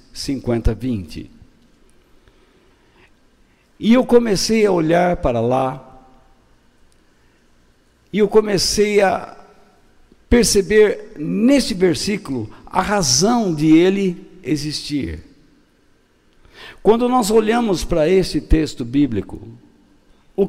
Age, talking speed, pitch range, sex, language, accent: 60-79, 85 wpm, 130-205 Hz, male, Portuguese, Brazilian